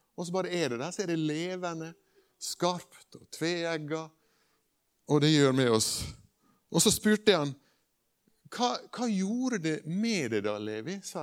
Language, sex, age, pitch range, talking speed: English, male, 60-79, 125-170 Hz, 160 wpm